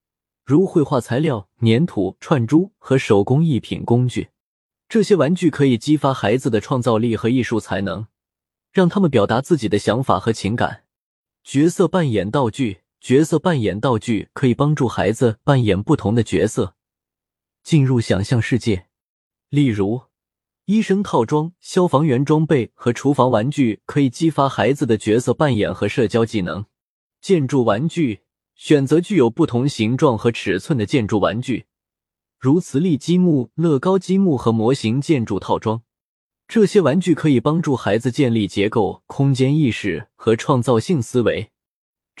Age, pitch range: 20-39, 110-155 Hz